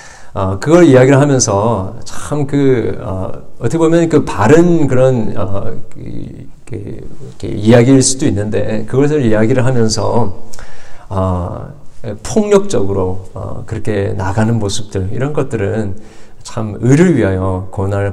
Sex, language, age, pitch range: male, Korean, 40-59, 95-130 Hz